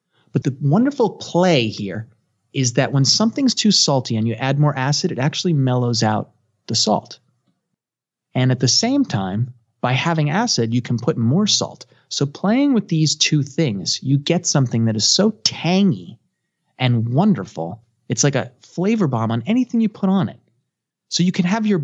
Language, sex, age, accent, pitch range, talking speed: English, male, 30-49, American, 125-170 Hz, 180 wpm